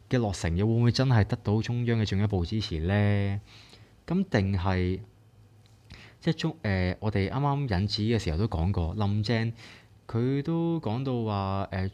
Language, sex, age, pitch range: Chinese, male, 20-39, 95-120 Hz